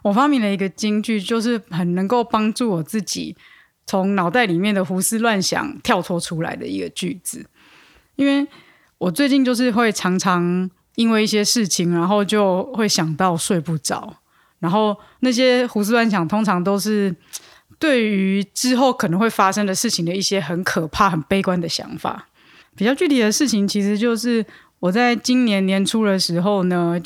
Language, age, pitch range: Chinese, 20-39, 190-250 Hz